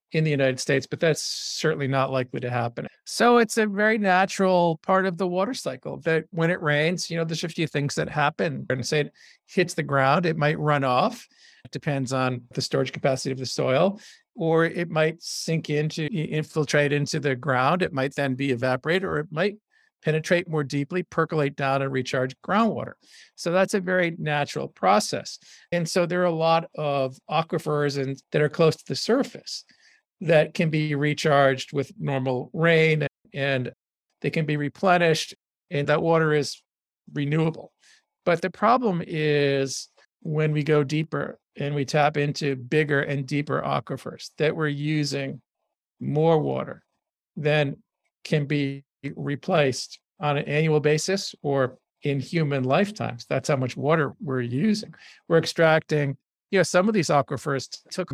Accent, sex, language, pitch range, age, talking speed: American, male, English, 140-170 Hz, 50-69, 170 wpm